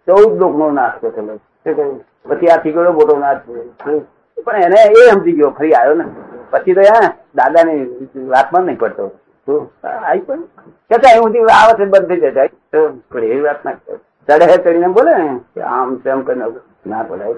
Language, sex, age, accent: Gujarati, male, 60-79, native